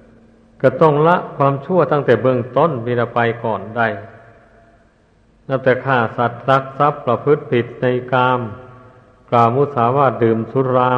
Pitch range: 115-140 Hz